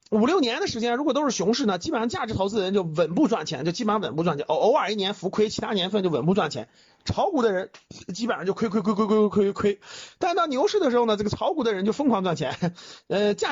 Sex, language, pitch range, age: male, Chinese, 175-240 Hz, 30-49